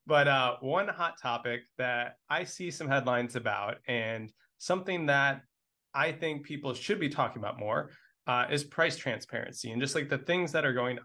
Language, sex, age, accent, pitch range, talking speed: English, male, 20-39, American, 115-140 Hz, 185 wpm